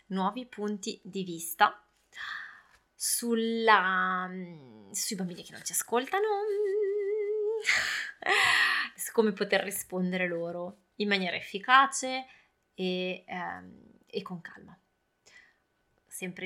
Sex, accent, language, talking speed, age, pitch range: female, native, Italian, 90 wpm, 20-39, 180-230 Hz